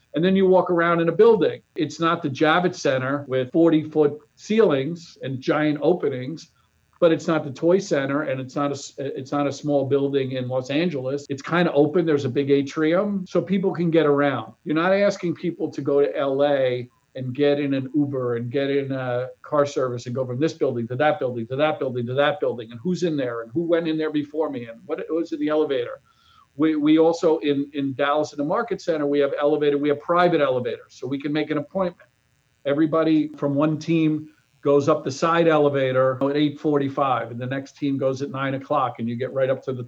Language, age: English, 50-69